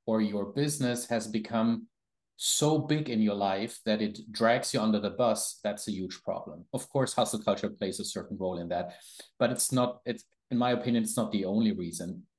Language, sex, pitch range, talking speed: English, male, 105-125 Hz, 210 wpm